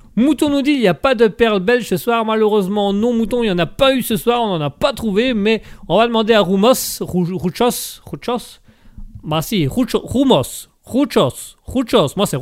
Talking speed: 210 wpm